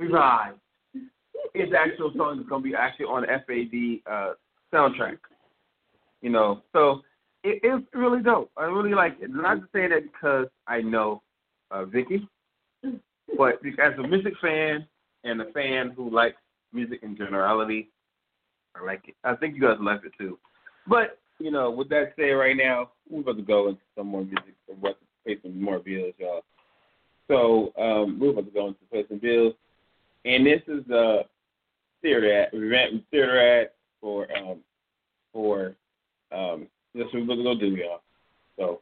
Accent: American